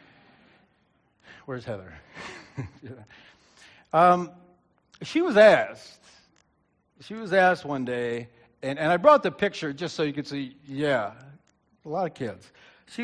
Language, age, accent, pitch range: English, 60-79, American, 130-215 Hz